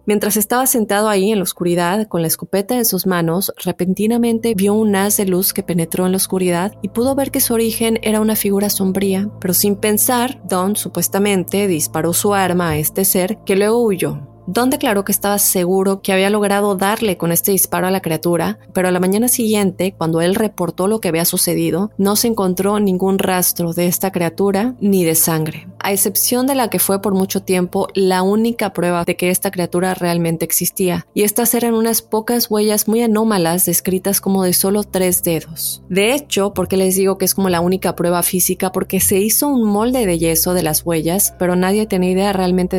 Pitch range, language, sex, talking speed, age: 175-210 Hz, Spanish, female, 205 wpm, 20-39